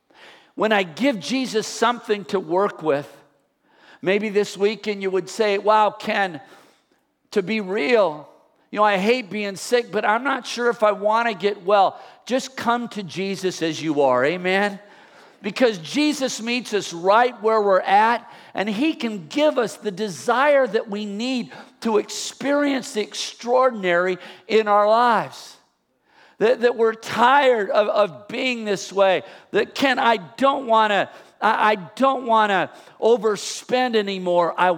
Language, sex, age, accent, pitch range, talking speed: English, male, 50-69, American, 205-255 Hz, 155 wpm